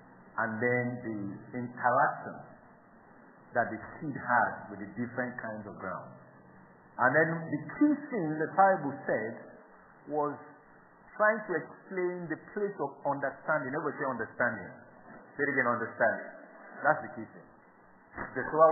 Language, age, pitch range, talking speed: English, 50-69, 145-205 Hz, 140 wpm